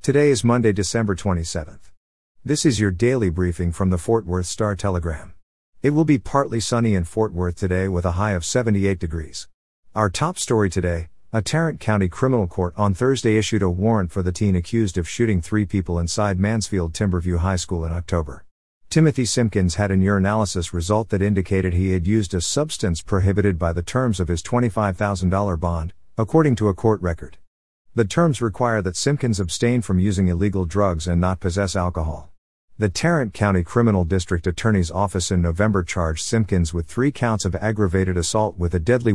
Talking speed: 180 wpm